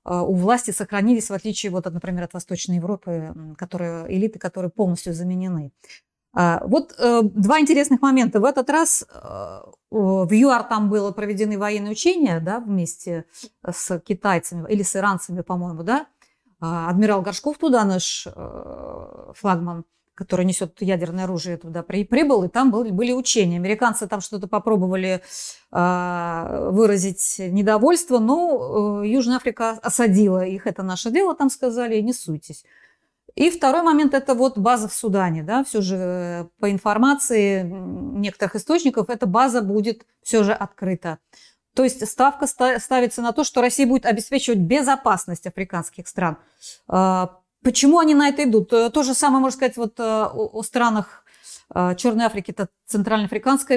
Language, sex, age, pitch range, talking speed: Russian, female, 30-49, 185-245 Hz, 135 wpm